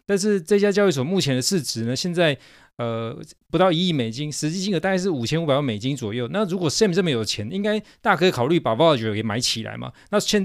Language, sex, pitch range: Chinese, male, 125-180 Hz